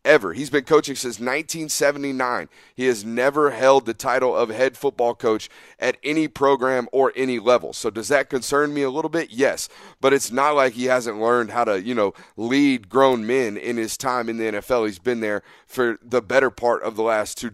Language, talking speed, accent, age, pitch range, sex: English, 210 wpm, American, 30-49, 115-135 Hz, male